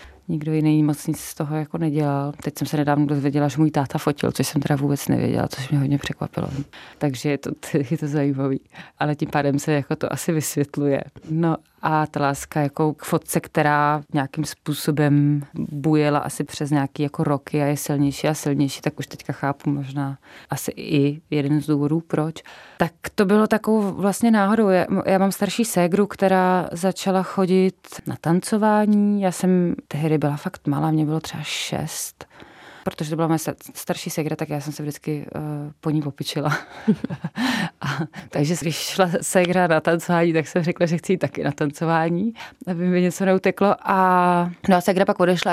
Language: Czech